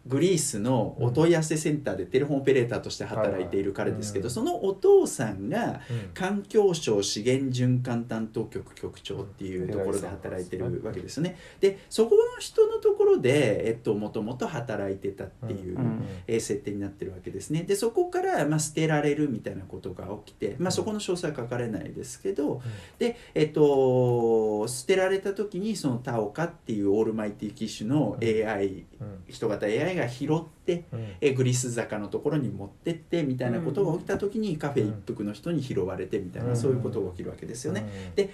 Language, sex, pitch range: Japanese, male, 105-165 Hz